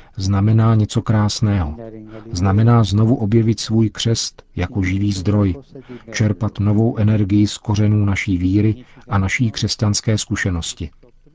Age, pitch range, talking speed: 50-69, 95-115 Hz, 115 wpm